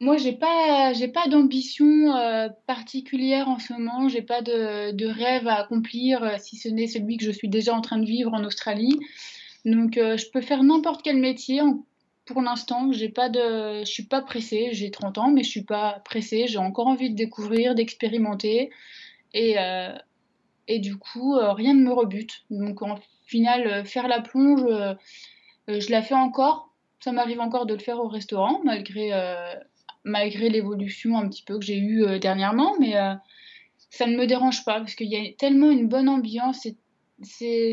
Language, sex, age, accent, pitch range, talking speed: French, female, 20-39, French, 210-255 Hz, 195 wpm